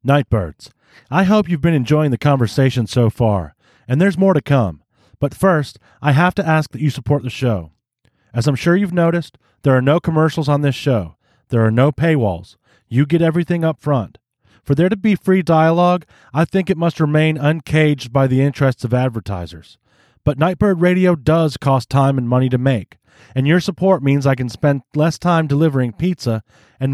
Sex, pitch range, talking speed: male, 125-170 Hz, 190 wpm